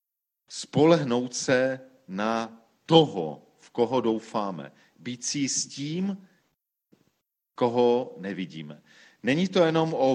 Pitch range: 120-160 Hz